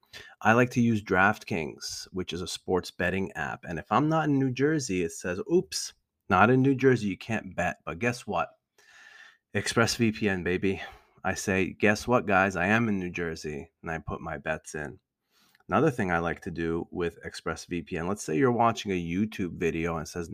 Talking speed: 200 wpm